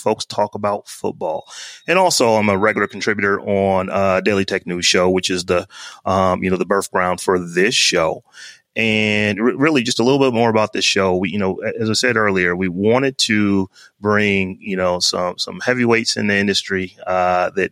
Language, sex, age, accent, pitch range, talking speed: English, male, 30-49, American, 100-115 Hz, 205 wpm